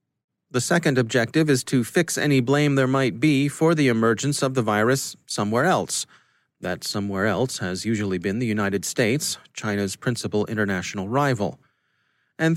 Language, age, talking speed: English, 30-49, 160 wpm